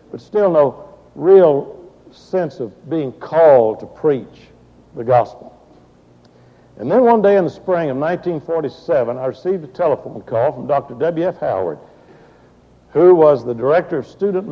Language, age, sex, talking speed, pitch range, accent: English, 60-79, male, 155 wpm, 135-170 Hz, American